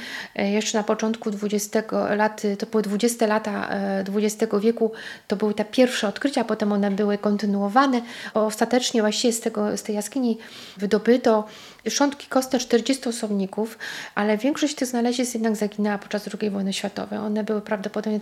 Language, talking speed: Polish, 150 wpm